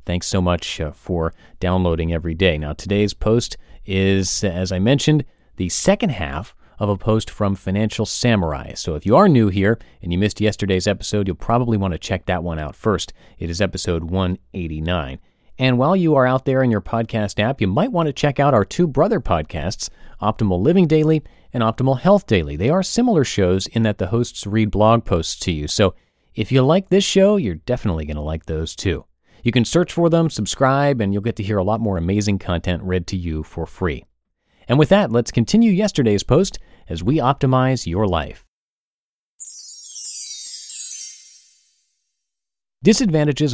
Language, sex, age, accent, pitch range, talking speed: English, male, 30-49, American, 90-135 Hz, 185 wpm